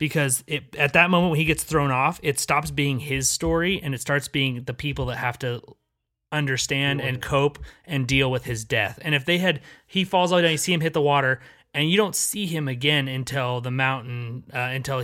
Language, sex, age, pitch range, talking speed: English, male, 30-49, 125-150 Hz, 225 wpm